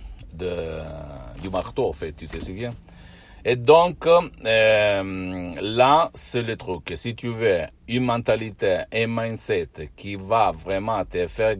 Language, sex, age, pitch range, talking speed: Italian, male, 60-79, 85-100 Hz, 145 wpm